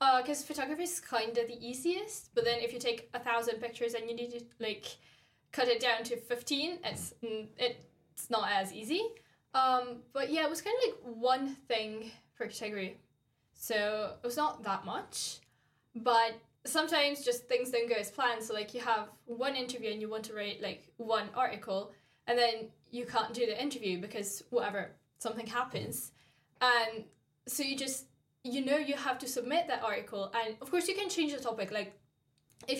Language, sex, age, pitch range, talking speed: English, female, 10-29, 220-265 Hz, 190 wpm